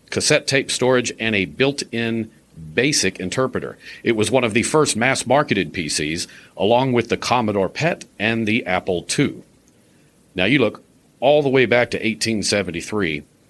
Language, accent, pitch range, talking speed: English, American, 105-140 Hz, 150 wpm